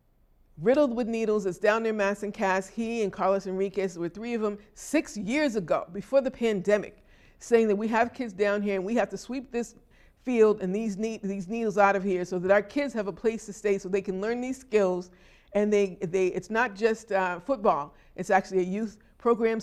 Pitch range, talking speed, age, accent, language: 190-225 Hz, 225 wpm, 50-69, American, English